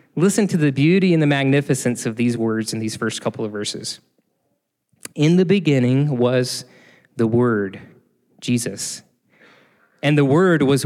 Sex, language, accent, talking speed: male, English, American, 150 wpm